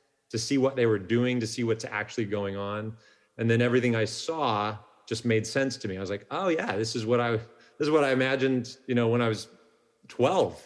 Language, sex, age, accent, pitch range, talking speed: English, male, 30-49, American, 105-125 Hz, 235 wpm